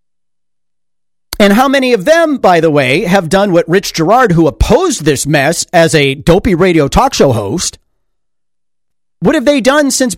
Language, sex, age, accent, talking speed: English, male, 40-59, American, 170 wpm